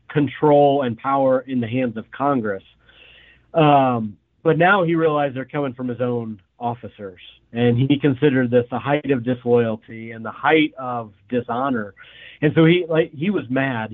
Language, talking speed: English, 170 wpm